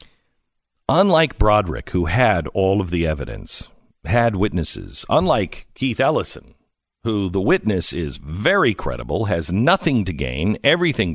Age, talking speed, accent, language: 50-69, 130 wpm, American, English